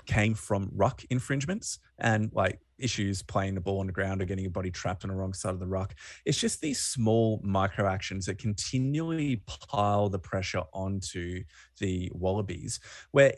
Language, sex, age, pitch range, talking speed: English, male, 20-39, 95-115 Hz, 180 wpm